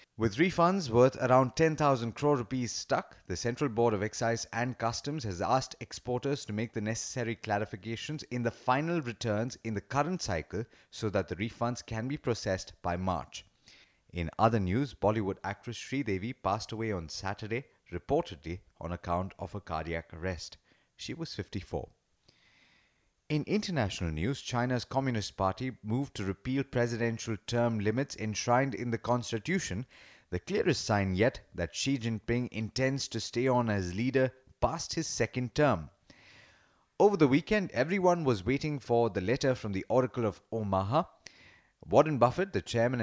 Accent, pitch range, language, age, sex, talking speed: Indian, 100-130 Hz, English, 30-49, male, 155 wpm